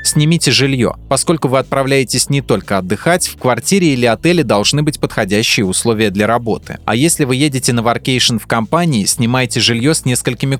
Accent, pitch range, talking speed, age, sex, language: native, 110-140 Hz, 170 wpm, 20-39, male, Russian